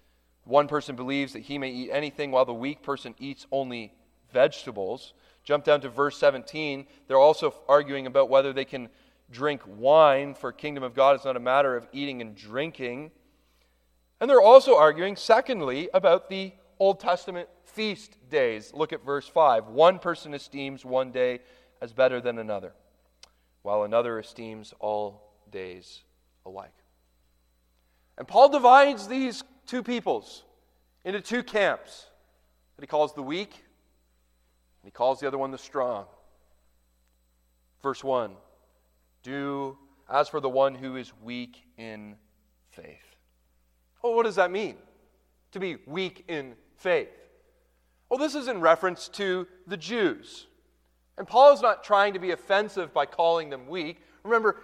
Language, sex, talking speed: English, male, 150 wpm